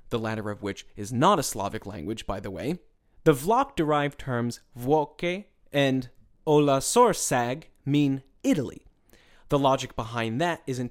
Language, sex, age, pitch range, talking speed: English, male, 30-49, 110-160 Hz, 150 wpm